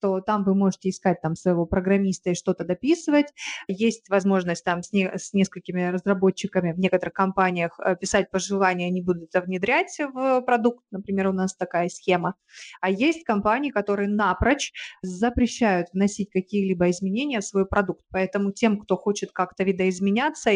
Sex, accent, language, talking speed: female, native, Russian, 155 wpm